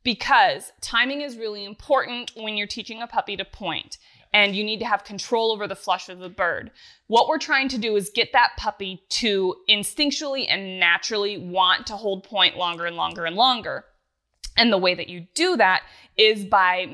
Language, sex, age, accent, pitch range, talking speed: English, female, 20-39, American, 185-225 Hz, 195 wpm